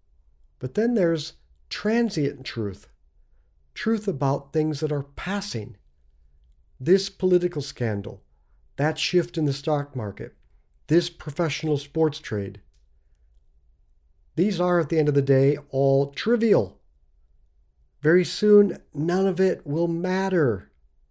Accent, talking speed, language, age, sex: American, 115 wpm, English, 50-69, male